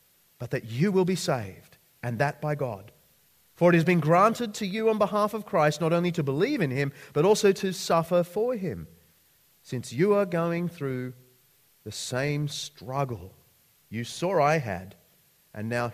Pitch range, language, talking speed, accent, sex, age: 130-185 Hz, English, 175 wpm, Australian, male, 40-59